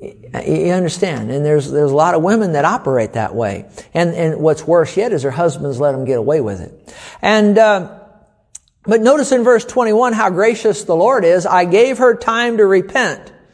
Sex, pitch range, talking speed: male, 155-205 Hz, 200 wpm